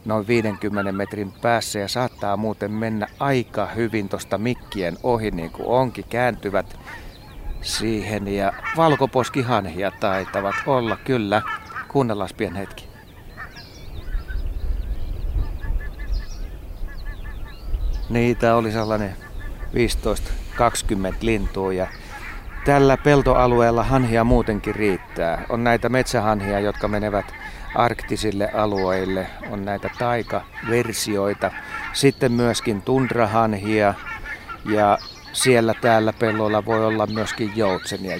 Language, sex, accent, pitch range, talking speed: Finnish, male, native, 100-120 Hz, 90 wpm